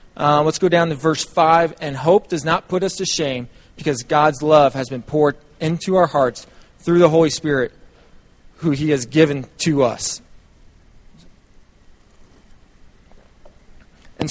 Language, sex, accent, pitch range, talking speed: English, male, American, 150-175 Hz, 145 wpm